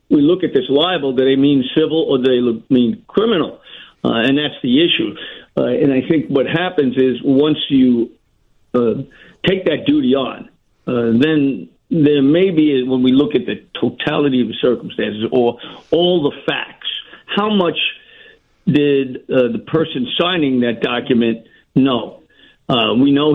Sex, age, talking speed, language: male, 50-69, 165 wpm, English